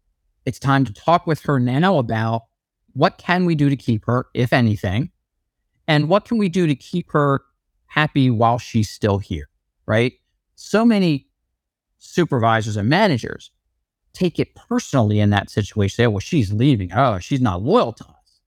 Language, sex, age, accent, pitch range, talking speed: English, male, 50-69, American, 110-155 Hz, 175 wpm